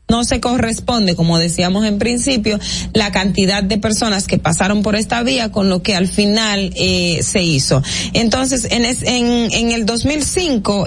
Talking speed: 170 wpm